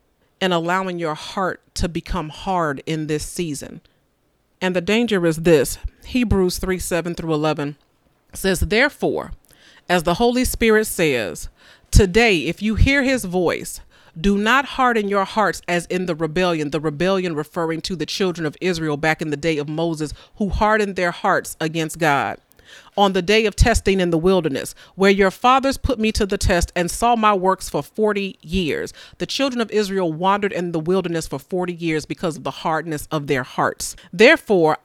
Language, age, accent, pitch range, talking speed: English, 40-59, American, 160-205 Hz, 180 wpm